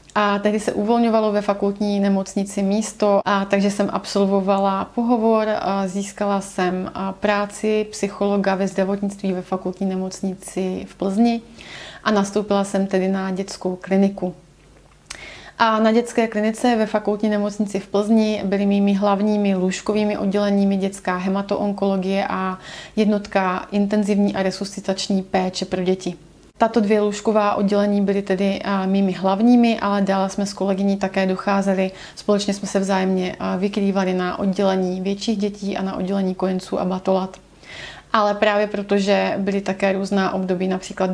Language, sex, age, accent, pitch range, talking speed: Czech, female, 30-49, native, 190-205 Hz, 135 wpm